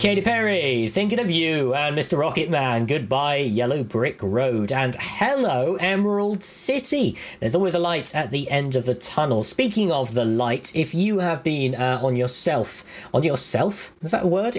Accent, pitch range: British, 105-145 Hz